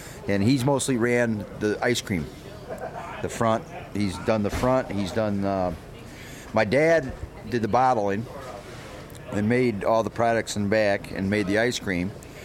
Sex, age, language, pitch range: male, 40-59, English, 100-115 Hz